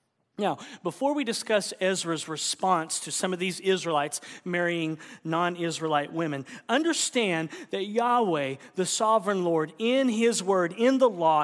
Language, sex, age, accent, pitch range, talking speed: English, male, 40-59, American, 150-210 Hz, 135 wpm